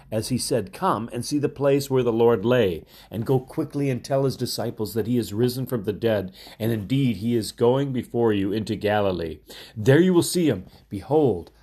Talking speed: 210 wpm